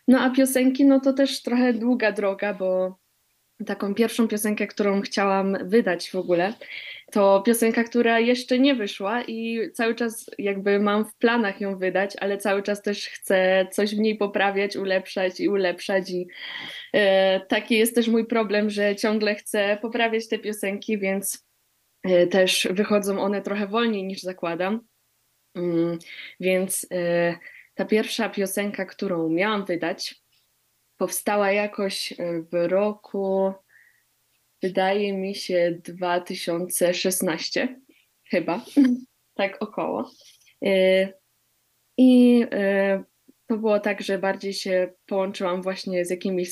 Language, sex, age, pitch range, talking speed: Polish, female, 20-39, 185-220 Hz, 120 wpm